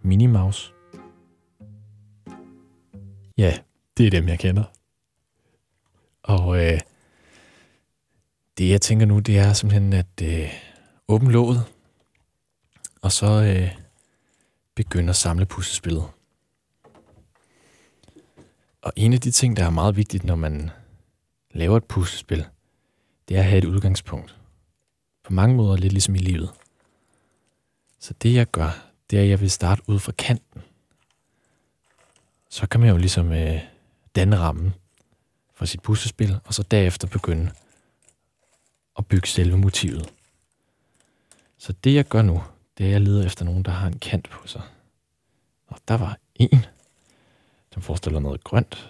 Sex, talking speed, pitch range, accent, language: male, 135 wpm, 85-105 Hz, native, Danish